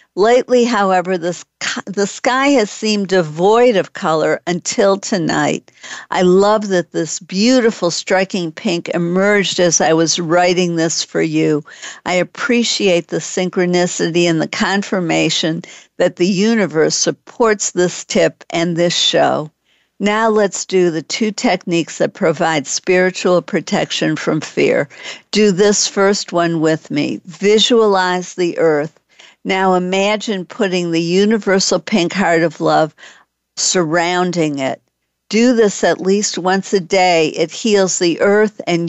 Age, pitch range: 60-79, 170-205 Hz